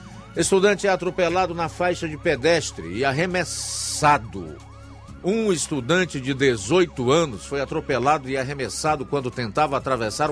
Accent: Brazilian